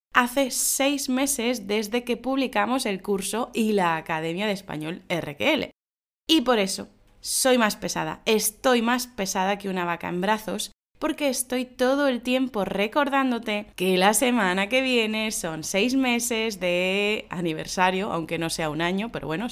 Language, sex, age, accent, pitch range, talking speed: Spanish, female, 20-39, Spanish, 185-255 Hz, 155 wpm